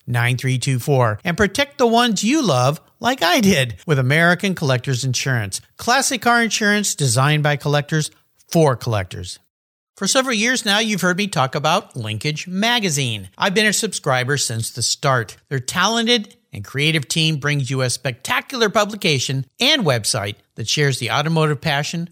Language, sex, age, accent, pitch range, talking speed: English, male, 50-69, American, 130-215 Hz, 155 wpm